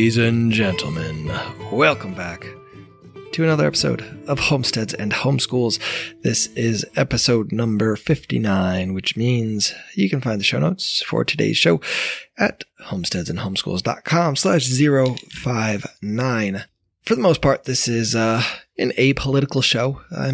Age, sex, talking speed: 20-39, male, 130 wpm